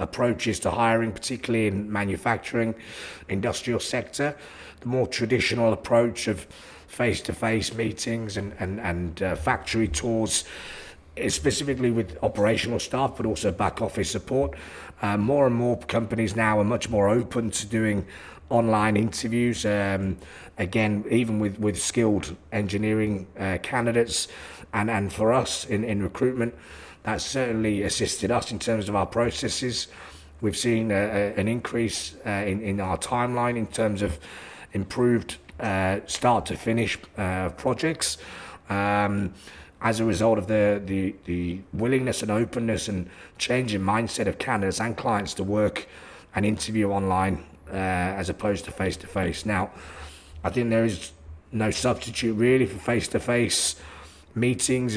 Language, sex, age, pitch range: Thai, male, 40-59, 95-115 Hz